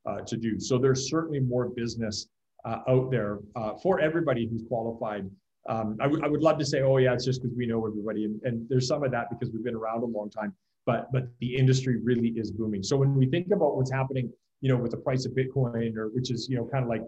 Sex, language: male, English